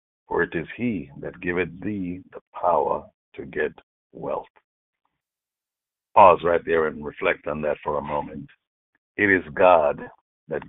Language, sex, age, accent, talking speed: English, male, 60-79, American, 145 wpm